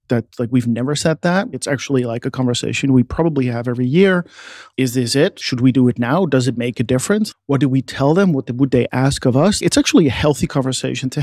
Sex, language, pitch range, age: male, English, 130-155 Hz, 40-59